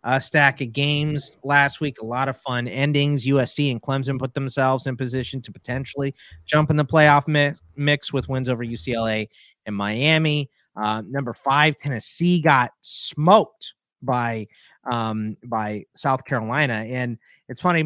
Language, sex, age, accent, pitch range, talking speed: English, male, 30-49, American, 115-145 Hz, 155 wpm